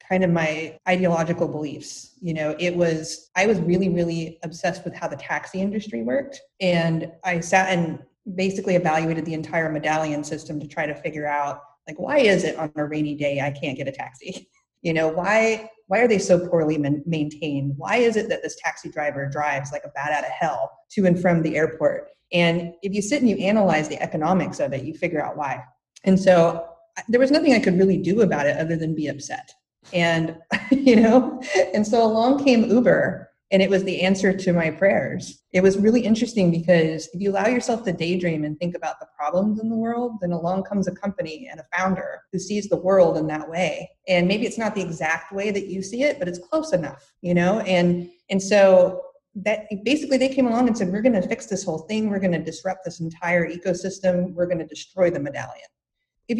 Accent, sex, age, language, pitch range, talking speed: American, female, 30-49, English, 165-205 Hz, 215 wpm